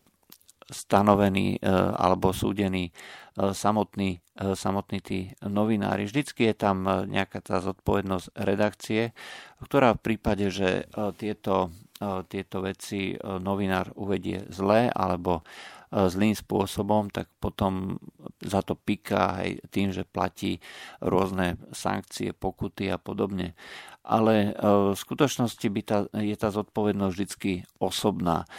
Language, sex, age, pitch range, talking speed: Slovak, male, 50-69, 95-105 Hz, 105 wpm